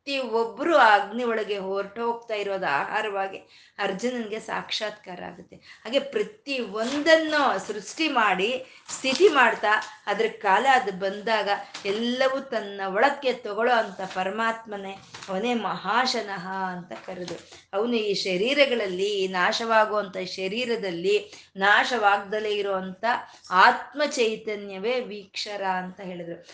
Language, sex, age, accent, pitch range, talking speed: Kannada, female, 20-39, native, 200-250 Hz, 95 wpm